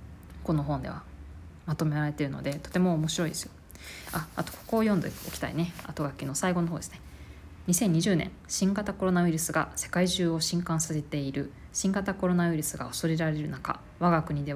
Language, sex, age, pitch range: Japanese, female, 20-39, 145-180 Hz